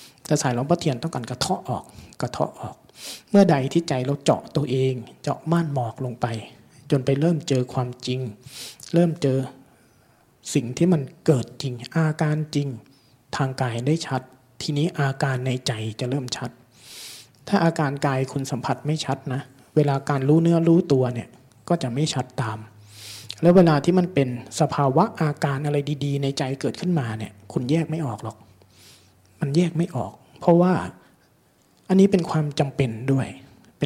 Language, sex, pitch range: Thai, male, 125-160 Hz